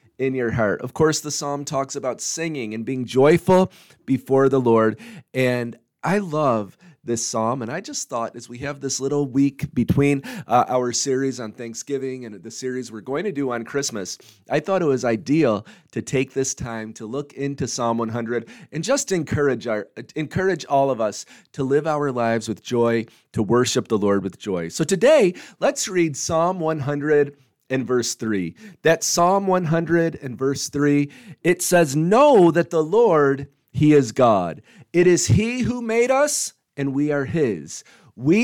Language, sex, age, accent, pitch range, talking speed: English, male, 30-49, American, 120-165 Hz, 185 wpm